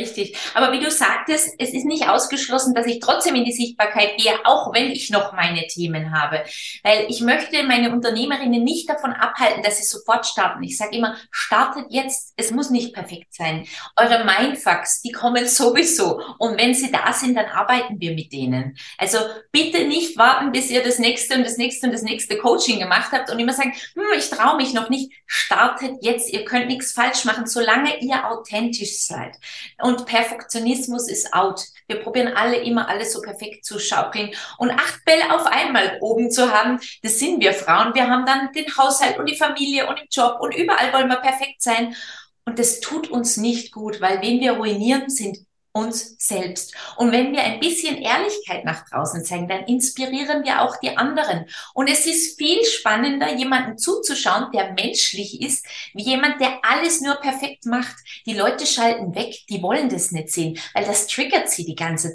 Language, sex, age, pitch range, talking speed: German, female, 20-39, 210-270 Hz, 190 wpm